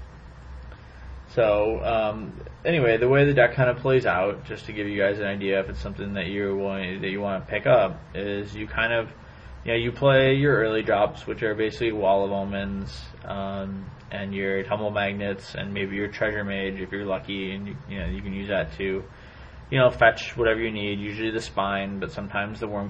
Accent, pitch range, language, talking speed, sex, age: American, 95-115 Hz, English, 220 wpm, male, 20-39